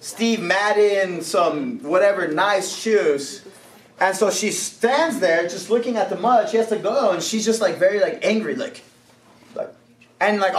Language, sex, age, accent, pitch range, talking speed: English, male, 30-49, American, 165-245 Hz, 175 wpm